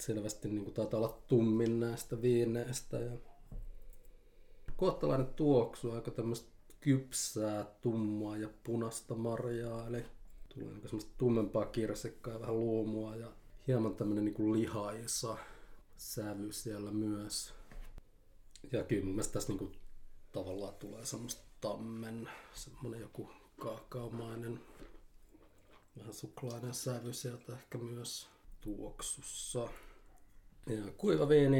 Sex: male